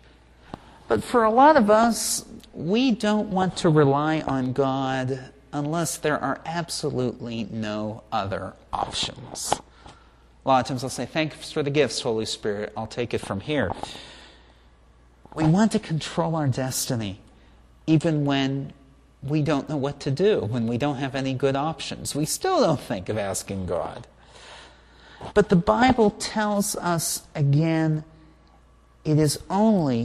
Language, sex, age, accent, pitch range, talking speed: English, male, 40-59, American, 110-160 Hz, 150 wpm